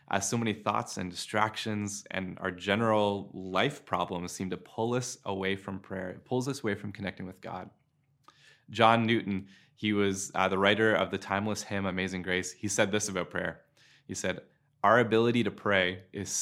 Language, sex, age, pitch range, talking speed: English, male, 20-39, 95-125 Hz, 185 wpm